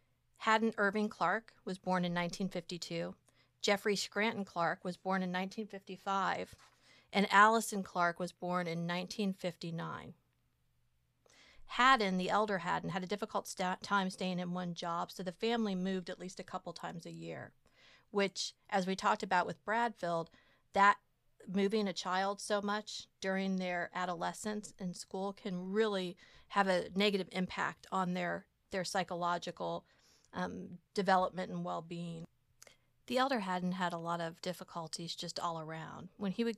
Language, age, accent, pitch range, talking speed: English, 40-59, American, 175-215 Hz, 150 wpm